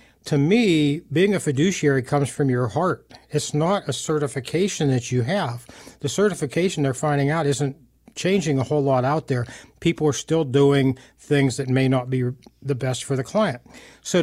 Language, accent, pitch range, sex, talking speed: English, American, 130-160 Hz, male, 180 wpm